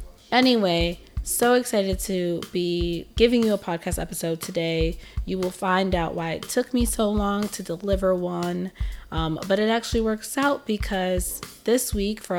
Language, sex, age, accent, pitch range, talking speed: English, female, 20-39, American, 175-220 Hz, 165 wpm